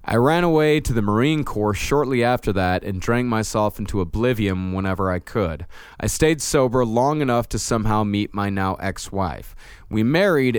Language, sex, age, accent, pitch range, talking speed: English, male, 20-39, American, 100-130 Hz, 175 wpm